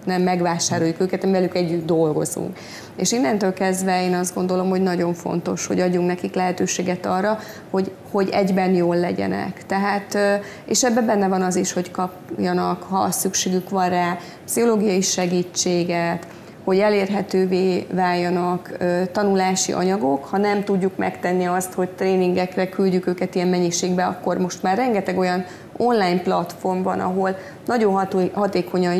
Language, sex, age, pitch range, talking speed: Hungarian, female, 30-49, 180-190 Hz, 140 wpm